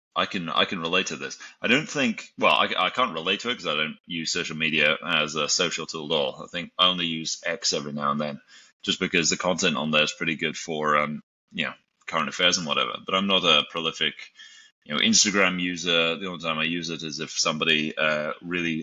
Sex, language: male, English